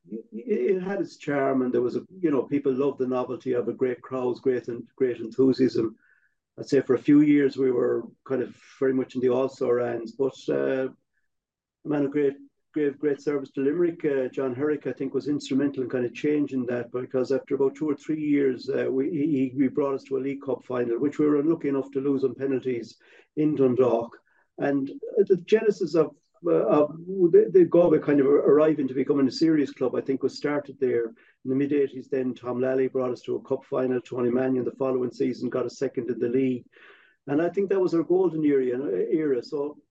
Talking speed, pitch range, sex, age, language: 215 wpm, 130-150 Hz, male, 50-69, English